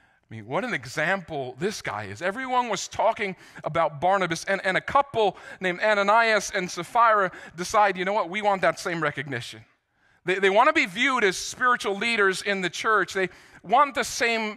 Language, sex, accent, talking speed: English, male, American, 185 wpm